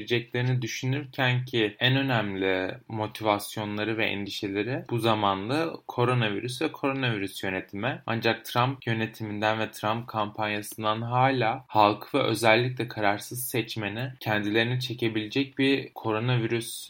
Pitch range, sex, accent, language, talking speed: 105-130 Hz, male, native, Turkish, 105 wpm